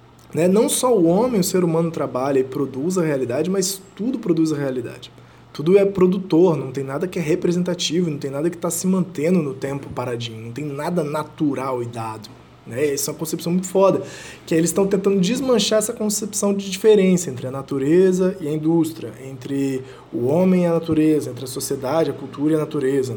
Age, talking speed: 20-39, 205 wpm